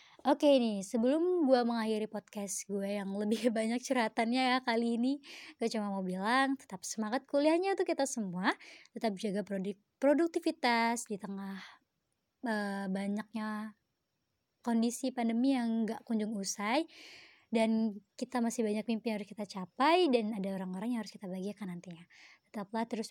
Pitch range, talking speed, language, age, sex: 205-285 Hz, 150 wpm, Indonesian, 20-39, male